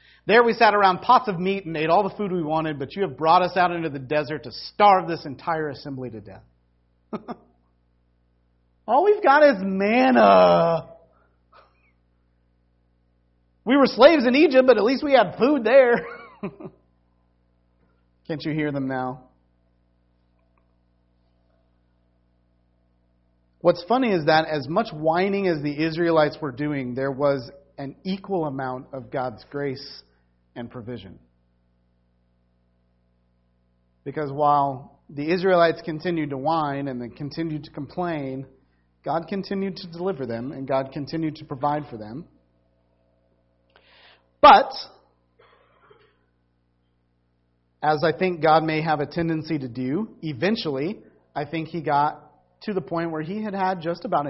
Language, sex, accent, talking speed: English, male, American, 135 wpm